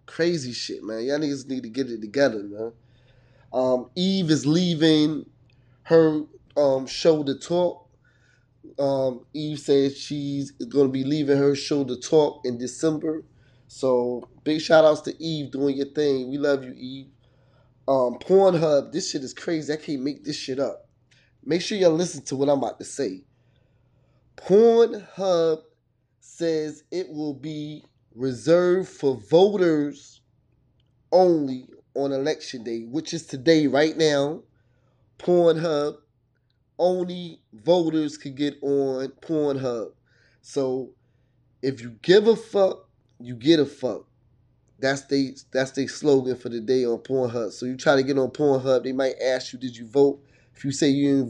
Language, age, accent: English, 20-39, American